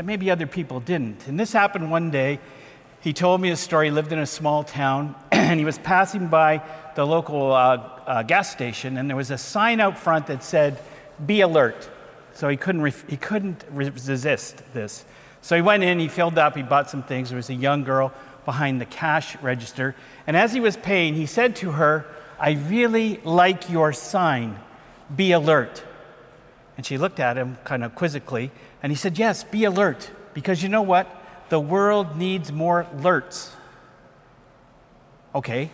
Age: 50-69